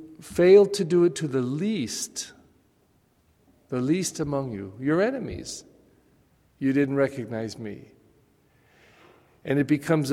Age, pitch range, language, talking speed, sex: 50-69, 115-145 Hz, English, 120 wpm, male